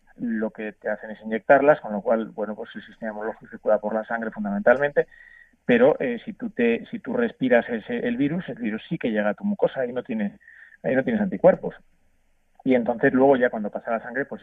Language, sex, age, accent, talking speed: Spanish, male, 30-49, Spanish, 225 wpm